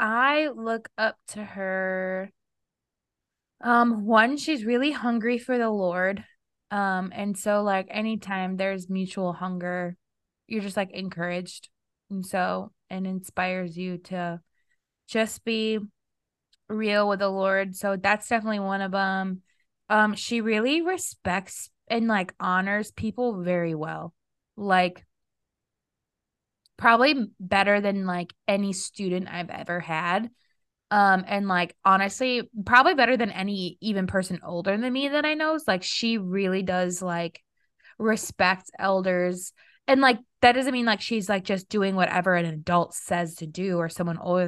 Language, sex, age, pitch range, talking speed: English, female, 20-39, 185-225 Hz, 145 wpm